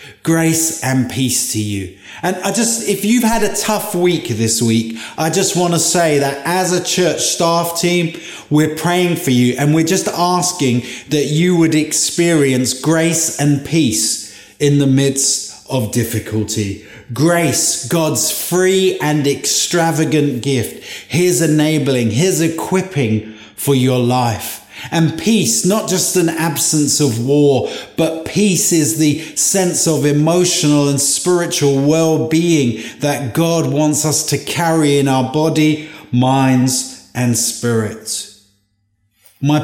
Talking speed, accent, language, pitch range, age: 140 wpm, British, English, 125-165 Hz, 30-49